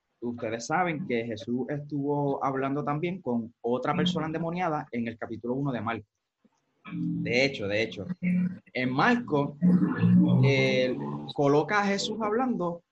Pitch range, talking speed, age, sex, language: 115-155 Hz, 125 wpm, 20-39, male, Spanish